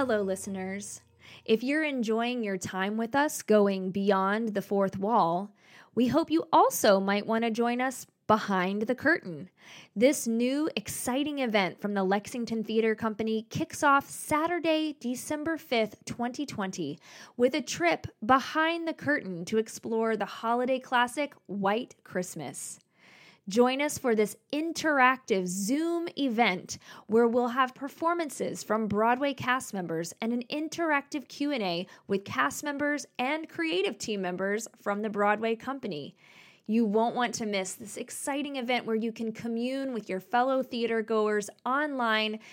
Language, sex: English, female